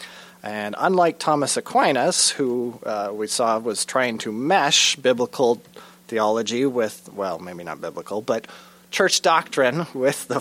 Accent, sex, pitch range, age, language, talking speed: American, male, 115-140 Hz, 30-49, English, 140 wpm